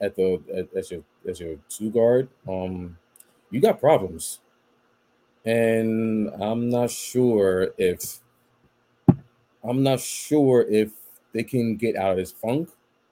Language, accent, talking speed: English, American, 130 wpm